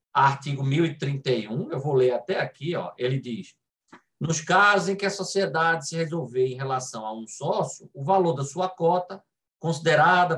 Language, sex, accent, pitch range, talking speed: Portuguese, male, Brazilian, 130-185 Hz, 160 wpm